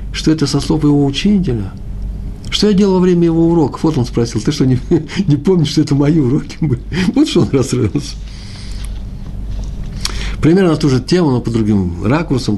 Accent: native